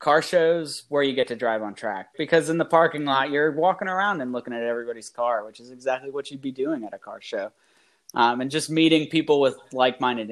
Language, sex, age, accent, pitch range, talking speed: English, male, 20-39, American, 115-145 Hz, 235 wpm